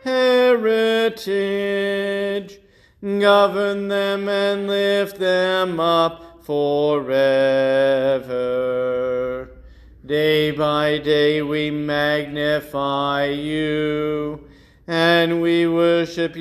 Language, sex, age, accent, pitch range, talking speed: English, male, 40-59, American, 150-195 Hz, 60 wpm